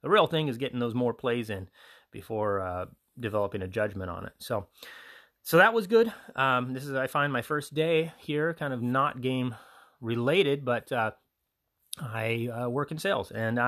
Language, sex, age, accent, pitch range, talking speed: English, male, 30-49, American, 115-150 Hz, 190 wpm